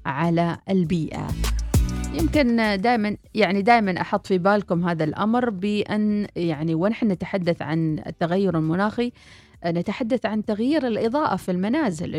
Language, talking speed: Arabic, 120 wpm